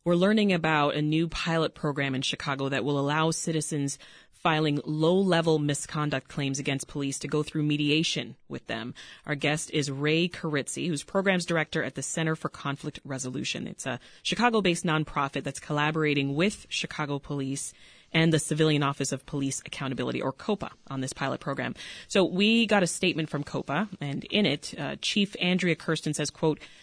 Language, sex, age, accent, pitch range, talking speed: English, female, 30-49, American, 140-170 Hz, 170 wpm